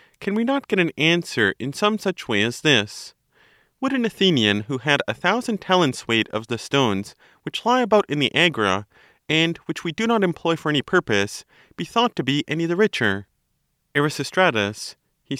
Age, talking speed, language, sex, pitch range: 30-49, 185 wpm, English, male, 110-180 Hz